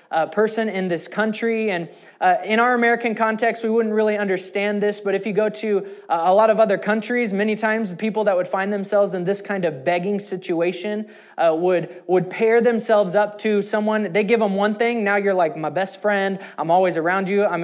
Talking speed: 220 wpm